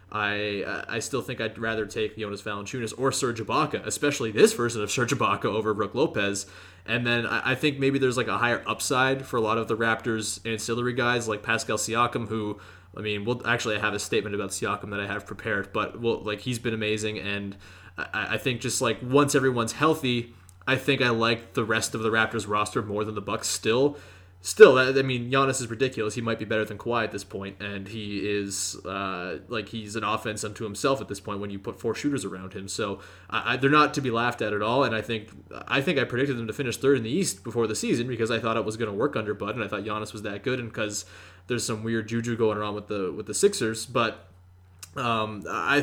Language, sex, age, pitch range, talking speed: English, male, 20-39, 105-125 Hz, 240 wpm